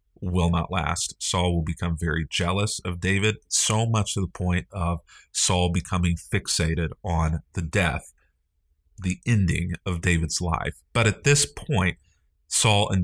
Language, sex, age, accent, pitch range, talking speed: English, male, 40-59, American, 85-100 Hz, 150 wpm